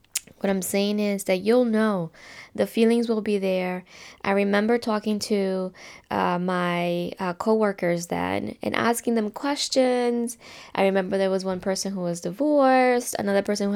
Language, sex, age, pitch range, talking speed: English, female, 10-29, 195-240 Hz, 160 wpm